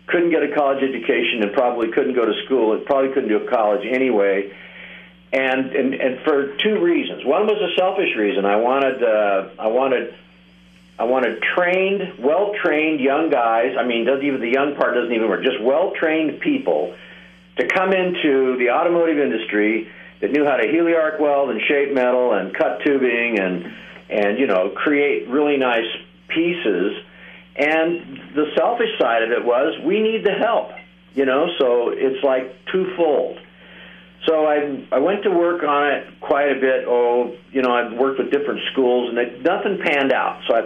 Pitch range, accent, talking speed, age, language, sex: 115-155 Hz, American, 185 wpm, 50-69, English, male